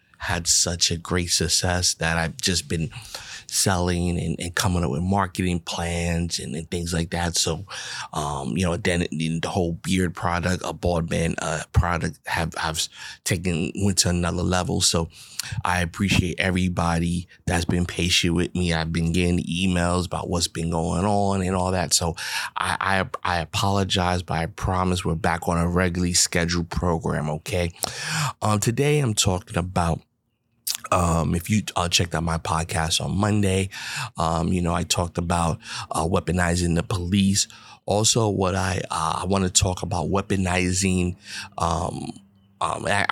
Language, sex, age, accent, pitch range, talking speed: English, male, 30-49, American, 85-95 Hz, 165 wpm